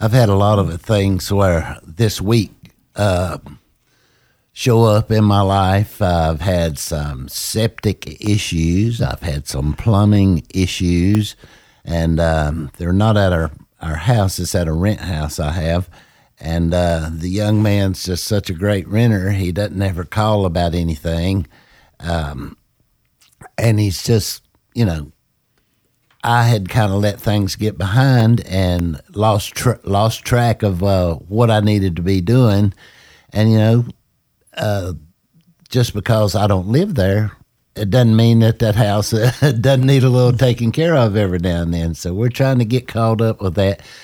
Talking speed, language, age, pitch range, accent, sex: 165 wpm, English, 60-79, 85-110 Hz, American, male